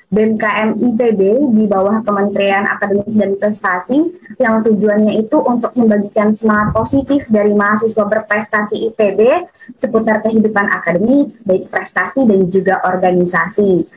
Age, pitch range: 20-39, 210-260 Hz